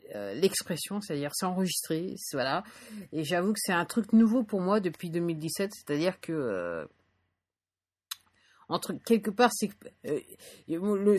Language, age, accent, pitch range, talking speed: English, 50-69, French, 155-205 Hz, 135 wpm